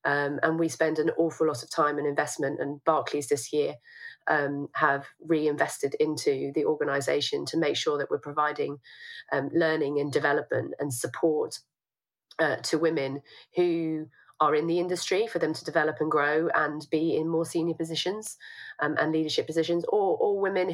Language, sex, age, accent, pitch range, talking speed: English, female, 30-49, British, 150-180 Hz, 175 wpm